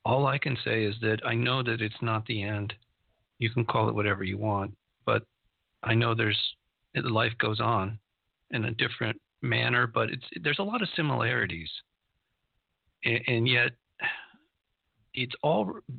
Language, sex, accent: English, male, American